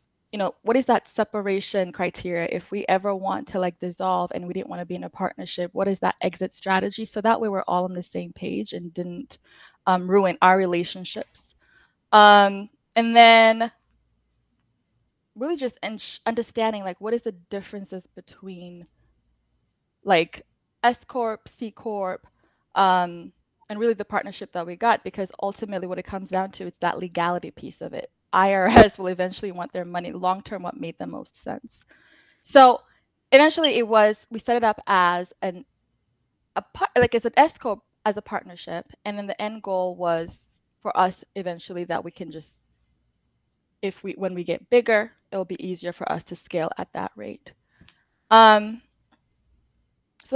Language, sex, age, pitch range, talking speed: English, female, 20-39, 180-220 Hz, 170 wpm